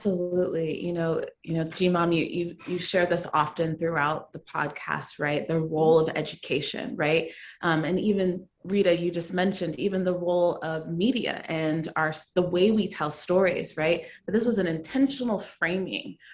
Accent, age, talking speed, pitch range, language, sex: American, 20-39, 175 wpm, 160-190 Hz, English, female